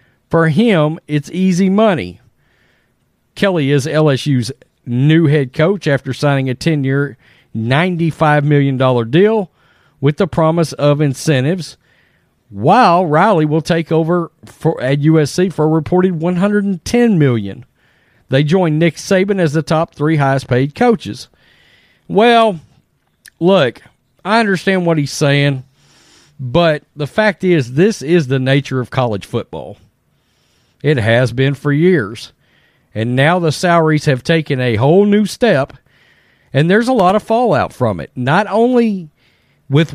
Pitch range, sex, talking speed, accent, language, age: 135-180 Hz, male, 135 wpm, American, English, 40-59